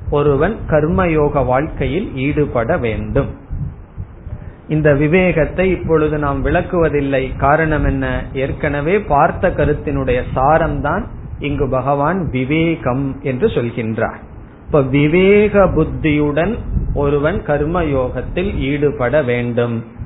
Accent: native